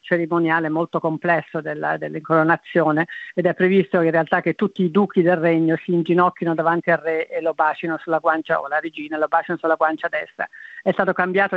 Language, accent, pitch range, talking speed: Italian, native, 155-175 Hz, 185 wpm